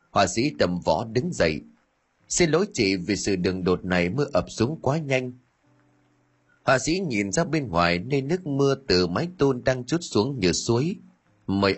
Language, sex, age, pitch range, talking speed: Vietnamese, male, 30-49, 90-150 Hz, 190 wpm